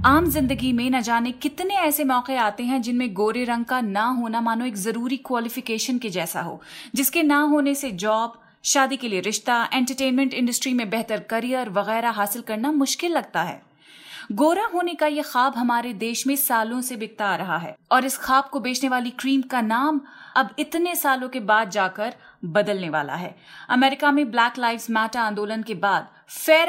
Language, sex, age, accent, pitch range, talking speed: Hindi, female, 30-49, native, 220-295 Hz, 190 wpm